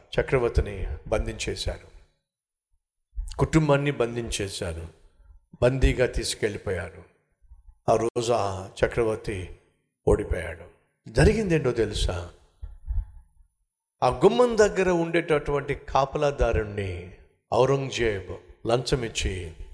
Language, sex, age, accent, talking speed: Telugu, male, 50-69, native, 55 wpm